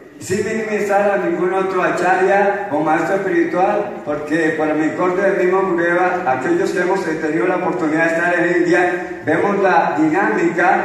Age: 50-69